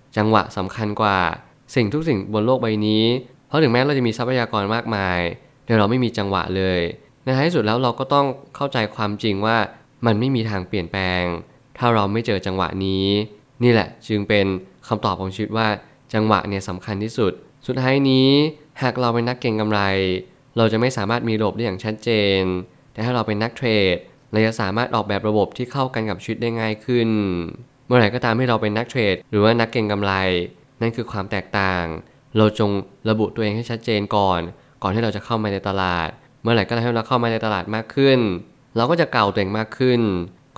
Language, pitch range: Thai, 100-120 Hz